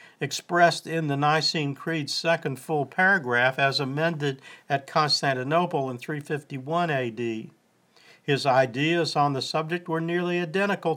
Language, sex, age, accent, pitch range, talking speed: English, male, 50-69, American, 130-165 Hz, 125 wpm